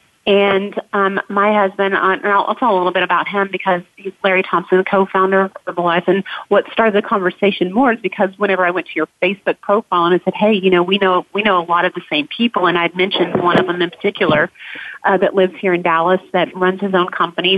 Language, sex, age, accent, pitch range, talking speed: English, female, 30-49, American, 185-215 Hz, 245 wpm